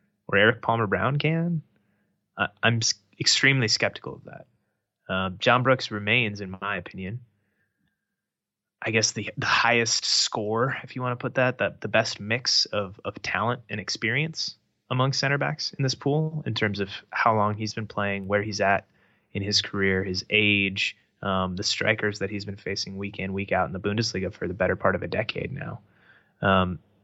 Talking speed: 190 wpm